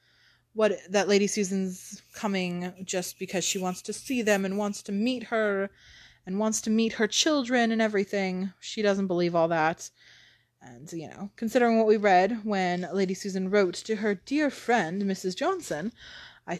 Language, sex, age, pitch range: English, female, 20-39, 175-205 Hz